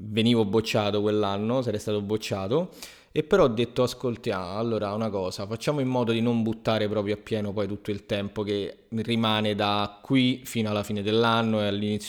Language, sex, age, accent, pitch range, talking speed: Italian, male, 20-39, native, 105-130 Hz, 185 wpm